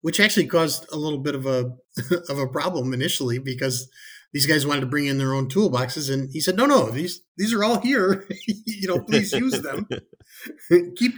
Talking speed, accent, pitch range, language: 205 wpm, American, 135-180 Hz, English